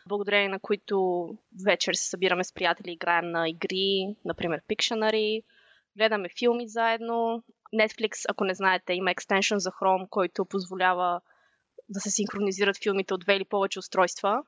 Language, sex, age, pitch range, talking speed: Bulgarian, female, 20-39, 190-225 Hz, 145 wpm